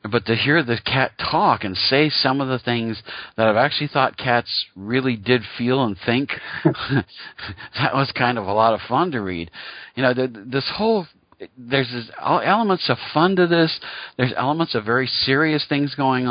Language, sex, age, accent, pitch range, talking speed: English, male, 50-69, American, 100-130 Hz, 180 wpm